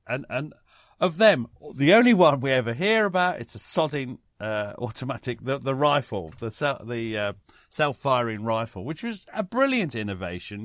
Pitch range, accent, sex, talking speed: 110-160 Hz, British, male, 165 wpm